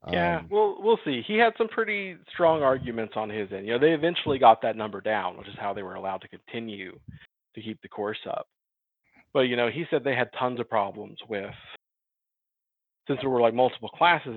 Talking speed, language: 215 wpm, English